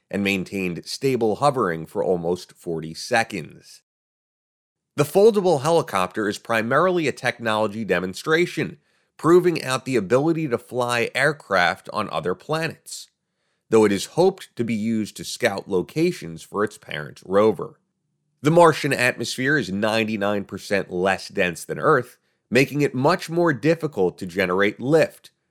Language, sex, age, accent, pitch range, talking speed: English, male, 30-49, American, 100-155 Hz, 135 wpm